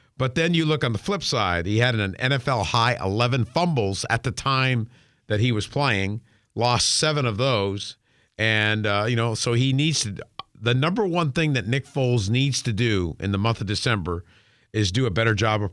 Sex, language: male, English